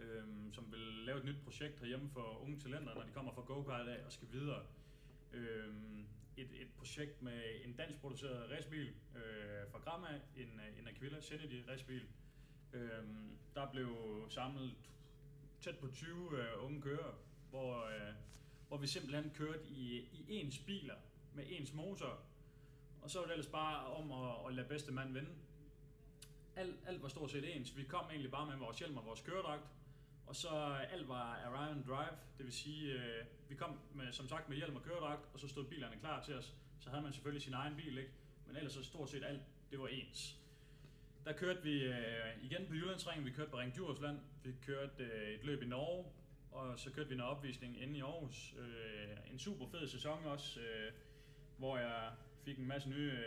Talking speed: 190 wpm